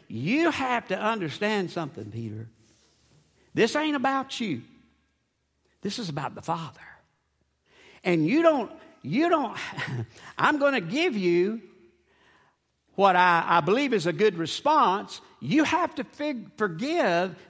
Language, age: English, 60-79